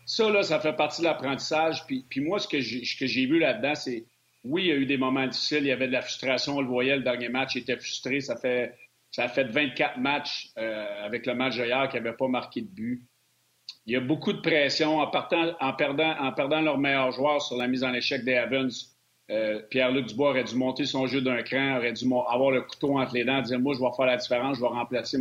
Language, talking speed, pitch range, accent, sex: French, 260 wpm, 125-145 Hz, Canadian, male